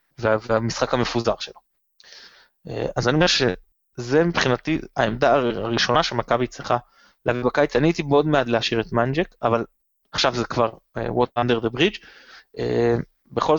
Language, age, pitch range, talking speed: Hebrew, 20-39, 120-175 Hz, 130 wpm